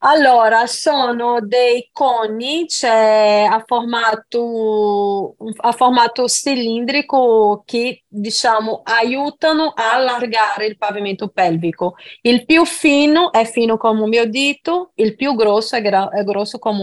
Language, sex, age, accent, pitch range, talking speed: Italian, female, 30-49, native, 210-260 Hz, 125 wpm